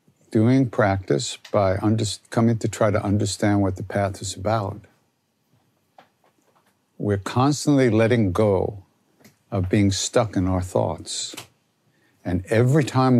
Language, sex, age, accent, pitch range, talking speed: English, male, 60-79, American, 100-120 Hz, 120 wpm